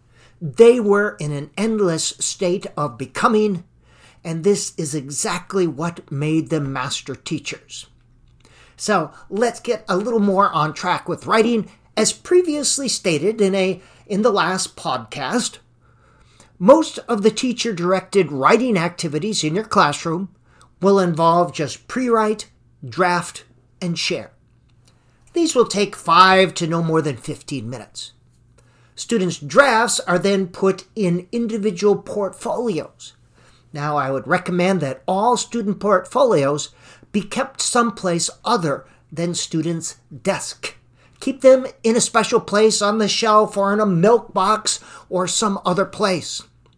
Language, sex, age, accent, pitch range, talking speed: English, male, 50-69, American, 150-215 Hz, 130 wpm